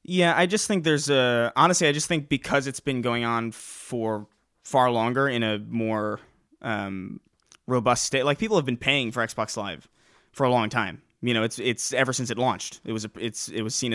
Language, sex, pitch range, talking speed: English, male, 110-140 Hz, 220 wpm